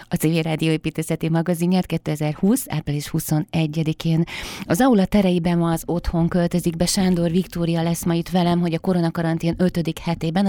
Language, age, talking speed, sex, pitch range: Hungarian, 30-49, 145 wpm, female, 155-180 Hz